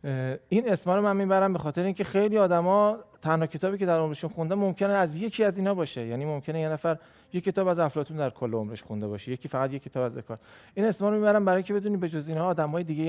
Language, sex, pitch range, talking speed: Persian, male, 130-170 Hz, 235 wpm